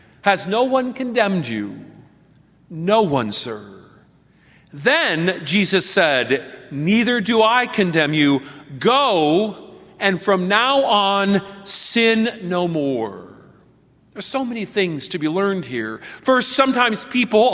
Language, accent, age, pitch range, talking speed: English, American, 40-59, 180-245 Hz, 120 wpm